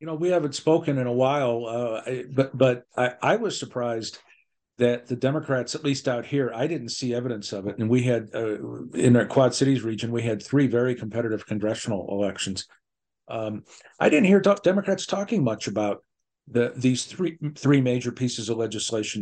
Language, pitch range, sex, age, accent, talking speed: English, 110-140 Hz, male, 50-69, American, 190 wpm